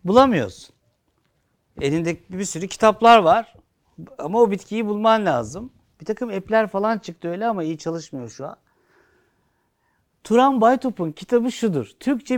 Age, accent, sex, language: 60-79, native, male, Turkish